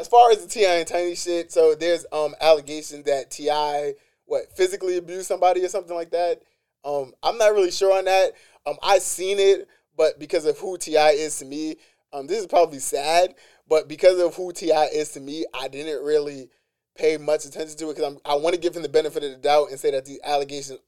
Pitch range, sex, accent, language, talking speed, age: 145-190 Hz, male, American, English, 225 wpm, 20-39